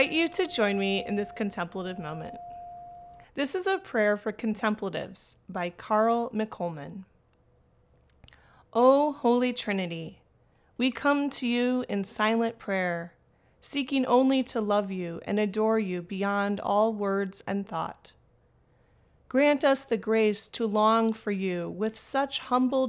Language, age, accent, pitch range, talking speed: English, 30-49, American, 190-240 Hz, 135 wpm